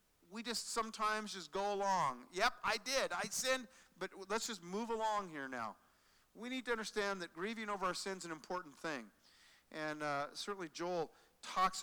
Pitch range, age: 160-215 Hz, 50-69